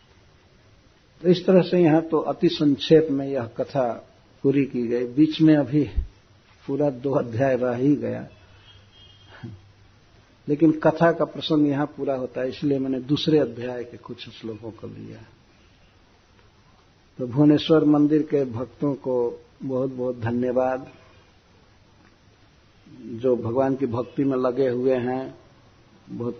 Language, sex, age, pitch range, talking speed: Hindi, male, 60-79, 115-150 Hz, 130 wpm